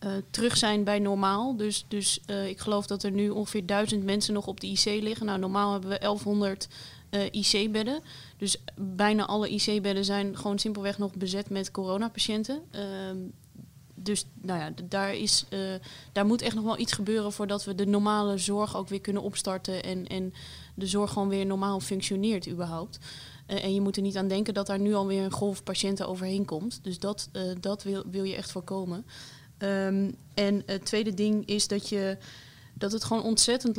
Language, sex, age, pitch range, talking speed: Dutch, female, 20-39, 195-210 Hz, 190 wpm